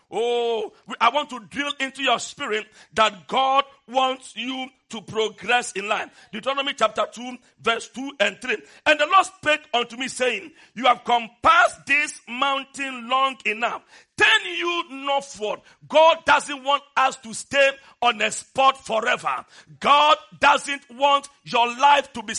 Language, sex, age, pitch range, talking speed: English, male, 50-69, 235-305 Hz, 155 wpm